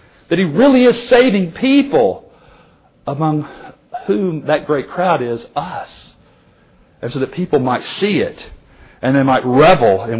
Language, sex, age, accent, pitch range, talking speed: English, male, 40-59, American, 120-165 Hz, 145 wpm